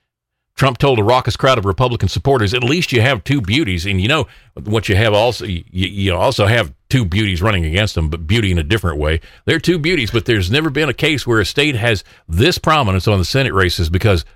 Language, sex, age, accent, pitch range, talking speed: English, male, 50-69, American, 100-135 Hz, 235 wpm